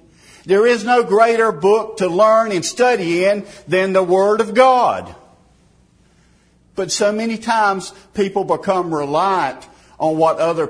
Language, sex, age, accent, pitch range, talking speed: English, male, 50-69, American, 140-195 Hz, 140 wpm